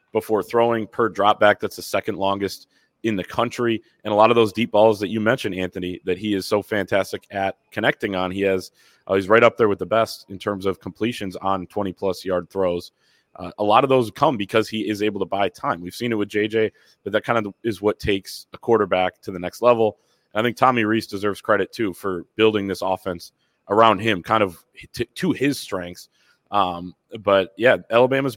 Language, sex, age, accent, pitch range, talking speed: English, male, 30-49, American, 95-115 Hz, 220 wpm